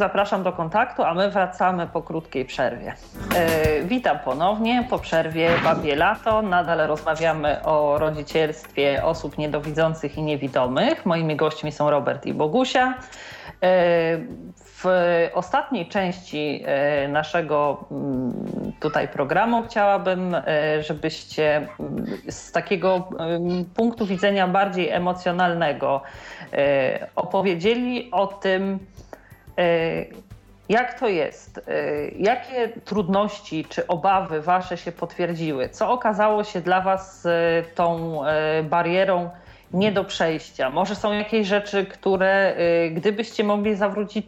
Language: Polish